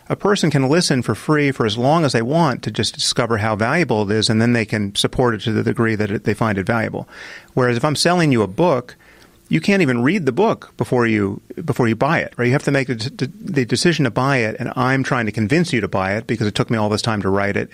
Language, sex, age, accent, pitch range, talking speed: English, male, 40-59, American, 110-145 Hz, 280 wpm